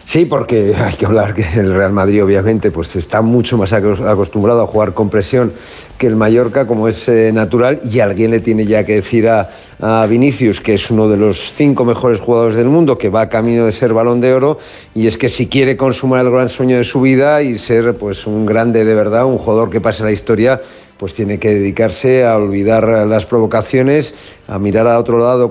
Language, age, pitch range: Spanish, 50-69, 110-125 Hz